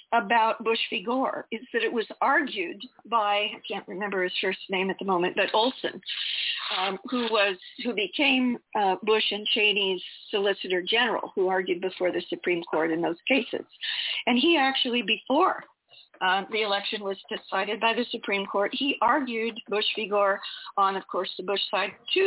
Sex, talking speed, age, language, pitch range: female, 180 wpm, 50-69, English, 195-245 Hz